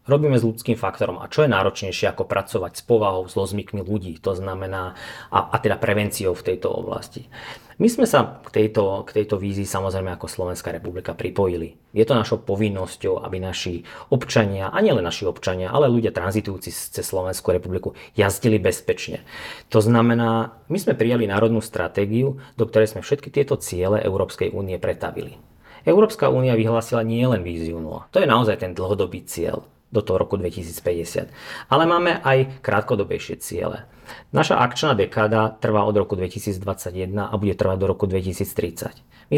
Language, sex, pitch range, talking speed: Slovak, male, 95-120 Hz, 165 wpm